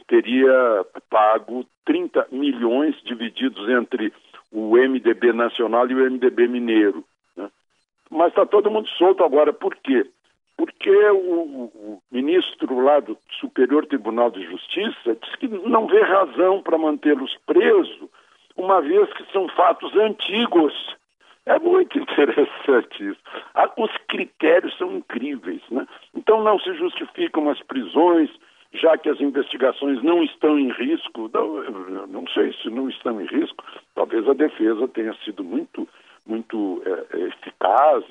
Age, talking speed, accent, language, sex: 60-79, 135 wpm, Brazilian, Portuguese, male